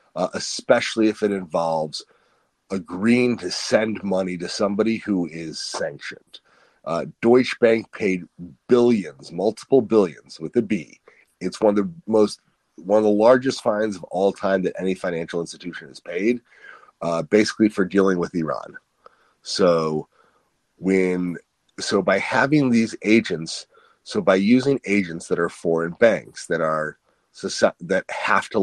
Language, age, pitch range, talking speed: English, 30-49, 90-115 Hz, 145 wpm